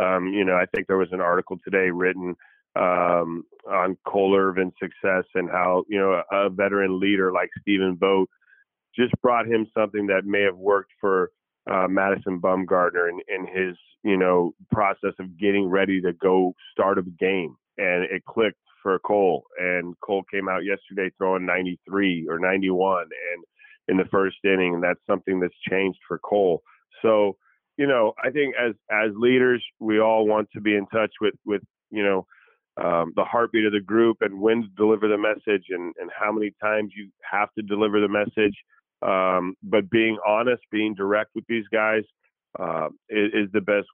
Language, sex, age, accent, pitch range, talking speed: English, male, 30-49, American, 95-105 Hz, 185 wpm